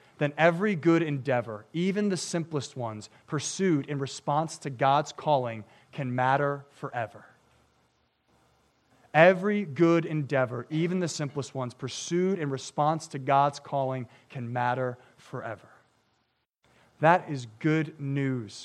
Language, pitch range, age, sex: English, 130-165 Hz, 30-49, male